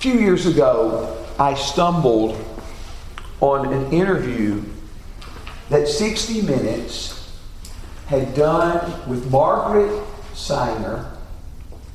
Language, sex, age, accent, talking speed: English, male, 50-69, American, 80 wpm